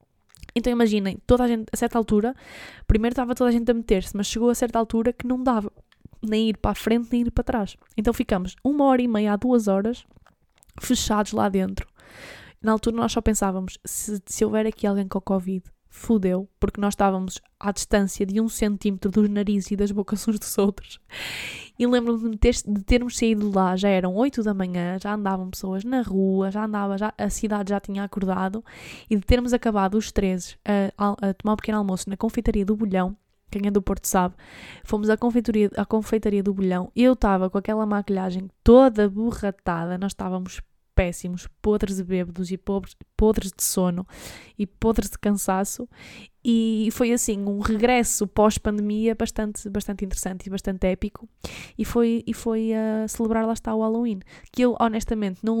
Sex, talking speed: female, 185 wpm